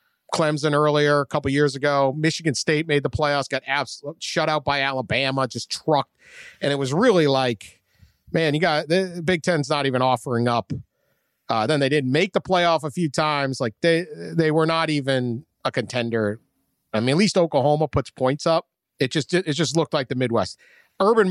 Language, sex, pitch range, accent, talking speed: English, male, 120-155 Hz, American, 195 wpm